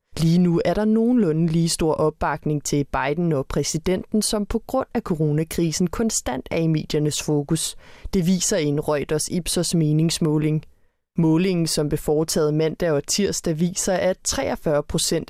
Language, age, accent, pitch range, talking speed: English, 20-39, Danish, 155-195 Hz, 155 wpm